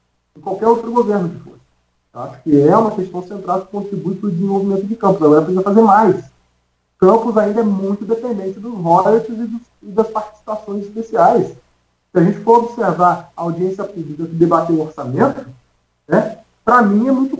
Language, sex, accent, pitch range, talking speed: Portuguese, male, Brazilian, 160-225 Hz, 185 wpm